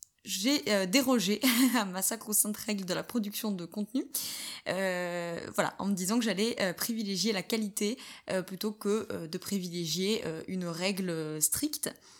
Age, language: 20-39, French